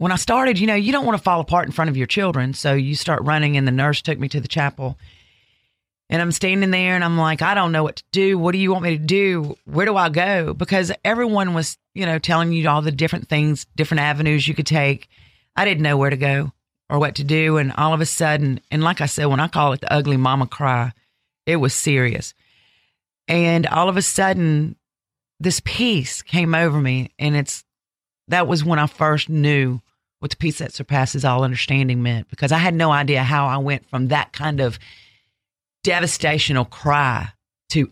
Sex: female